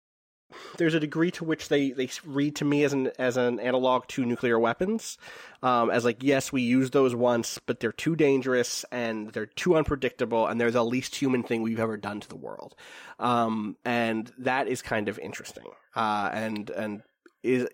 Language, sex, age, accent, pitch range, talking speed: English, male, 20-39, American, 115-135 Hz, 195 wpm